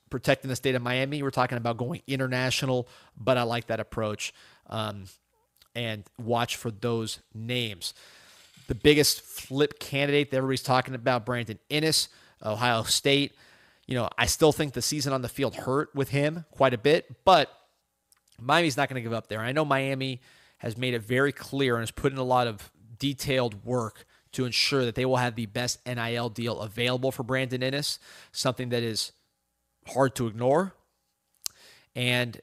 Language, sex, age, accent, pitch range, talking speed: English, male, 30-49, American, 115-135 Hz, 175 wpm